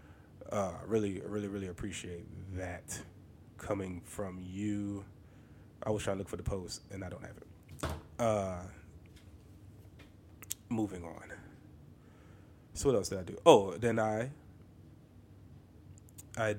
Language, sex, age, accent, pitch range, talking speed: English, male, 30-49, American, 100-115 Hz, 125 wpm